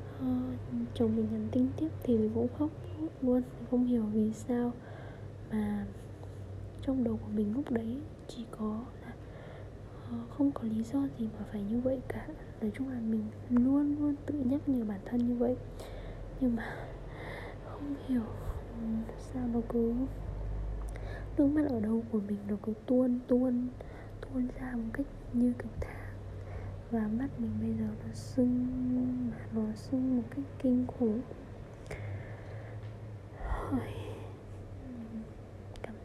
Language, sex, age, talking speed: Vietnamese, female, 20-39, 145 wpm